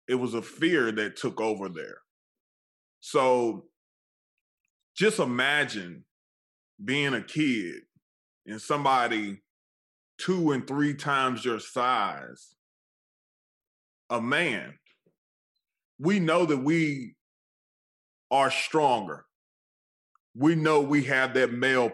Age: 20-39